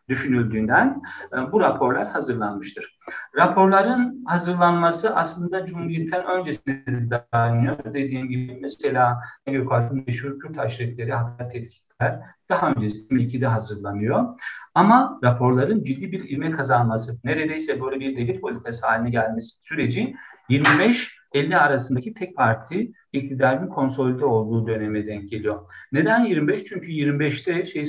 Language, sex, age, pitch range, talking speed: Turkish, male, 50-69, 120-145 Hz, 110 wpm